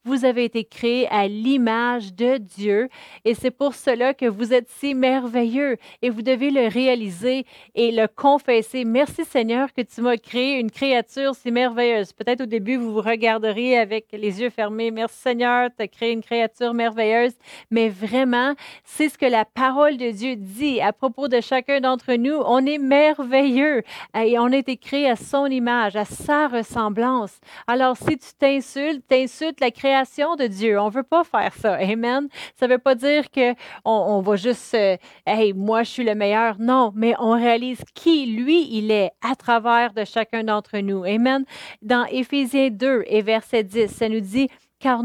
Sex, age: female, 40-59